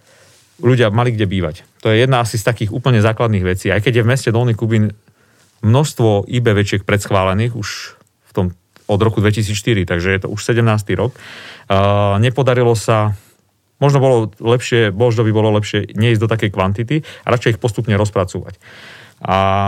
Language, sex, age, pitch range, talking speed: Slovak, male, 40-59, 95-115 Hz, 165 wpm